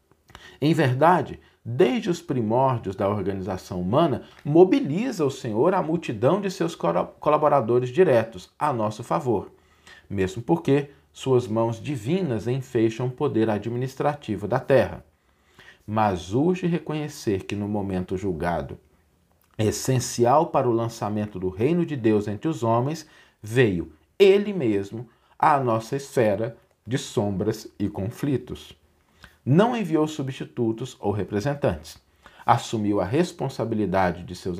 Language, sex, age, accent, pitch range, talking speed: Portuguese, male, 40-59, Brazilian, 95-145 Hz, 120 wpm